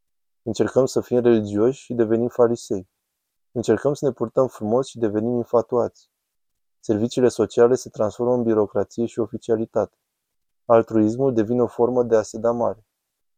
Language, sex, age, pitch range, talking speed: Romanian, male, 20-39, 110-125 Hz, 145 wpm